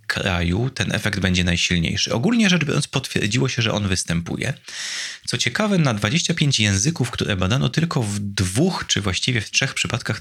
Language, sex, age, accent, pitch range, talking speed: Polish, male, 30-49, native, 95-130 Hz, 165 wpm